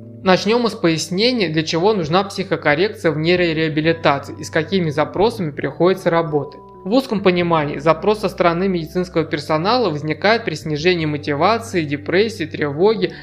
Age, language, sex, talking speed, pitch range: 20-39, Russian, male, 130 wpm, 155-185 Hz